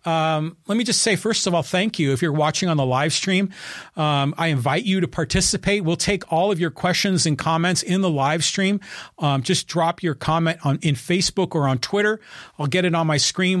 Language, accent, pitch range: English, American, 150-185 Hz